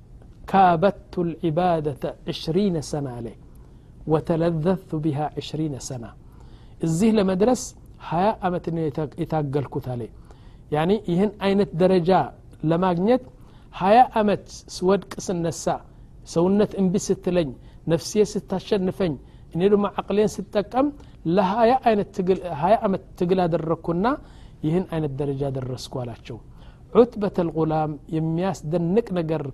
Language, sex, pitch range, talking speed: Amharic, male, 150-195 Hz, 105 wpm